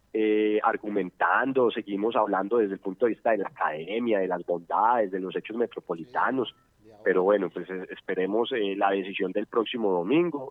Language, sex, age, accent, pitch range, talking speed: Spanish, male, 30-49, Colombian, 100-125 Hz, 165 wpm